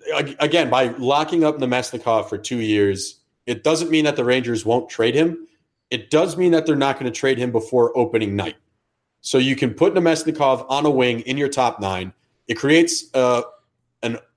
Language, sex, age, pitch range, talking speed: English, male, 30-49, 115-150 Hz, 190 wpm